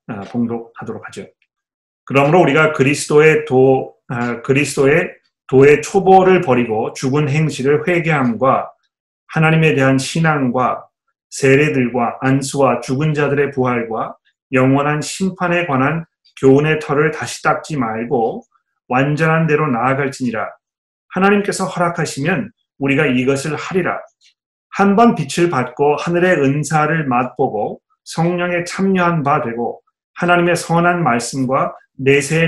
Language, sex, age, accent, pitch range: Korean, male, 30-49, native, 135-175 Hz